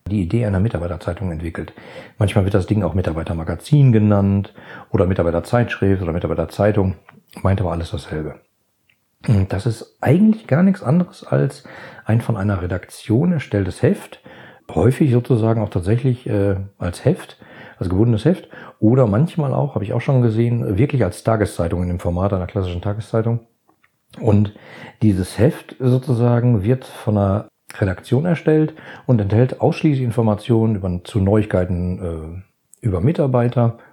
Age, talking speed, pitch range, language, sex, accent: 40-59, 140 wpm, 95-120 Hz, German, male, German